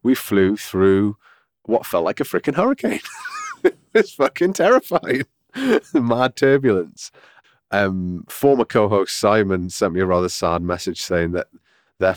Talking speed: 145 wpm